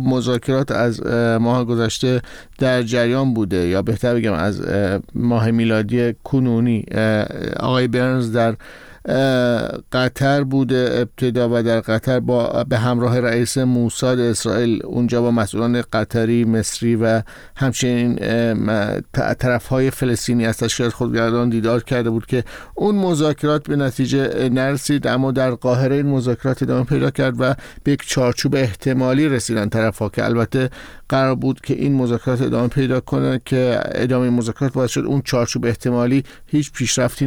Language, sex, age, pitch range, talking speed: Persian, male, 50-69, 115-135 Hz, 135 wpm